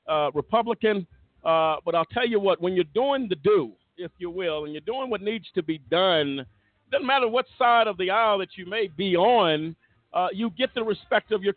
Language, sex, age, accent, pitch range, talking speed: English, male, 50-69, American, 175-215 Hz, 220 wpm